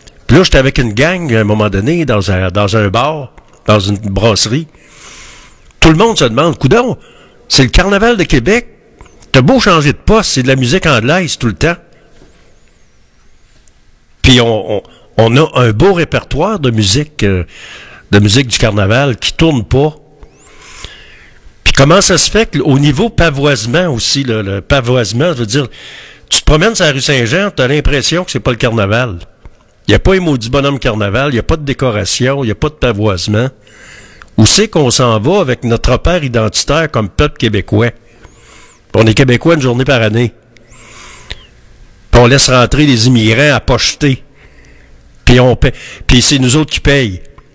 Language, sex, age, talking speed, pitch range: French, male, 60-79, 185 wpm, 115-150 Hz